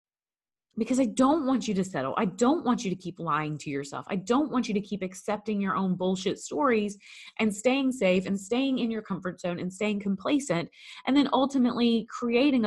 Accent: American